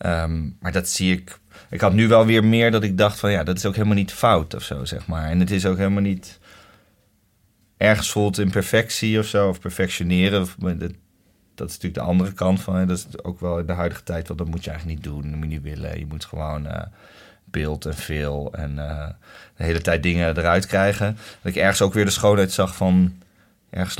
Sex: male